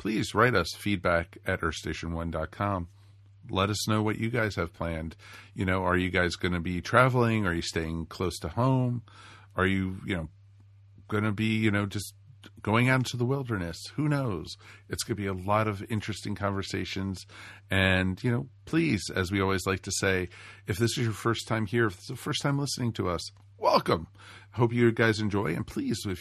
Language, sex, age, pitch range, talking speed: English, male, 50-69, 95-115 Hz, 200 wpm